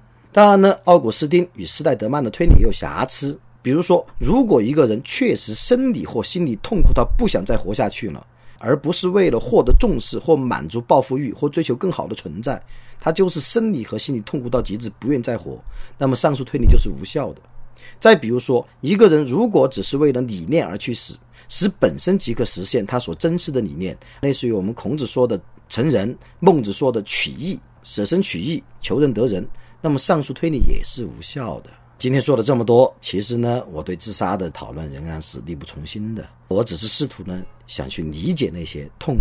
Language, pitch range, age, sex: Chinese, 85-135 Hz, 40-59, male